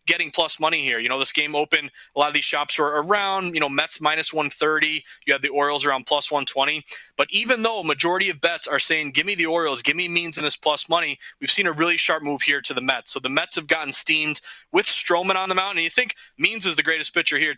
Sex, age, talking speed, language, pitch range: male, 20-39, 265 wpm, English, 145-170 Hz